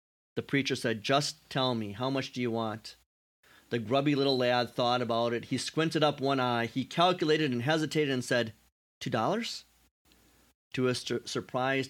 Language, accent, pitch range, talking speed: English, American, 115-140 Hz, 170 wpm